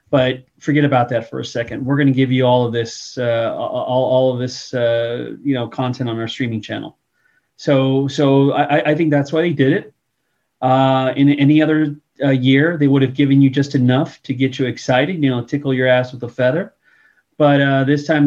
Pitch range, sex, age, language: 130-150 Hz, male, 30-49, English